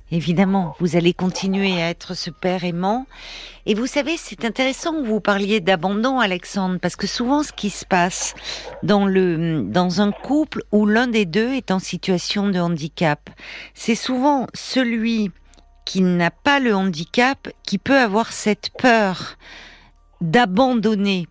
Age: 50-69